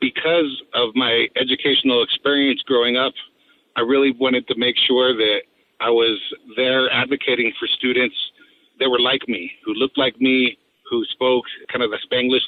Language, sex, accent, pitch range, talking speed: English, male, American, 120-135 Hz, 165 wpm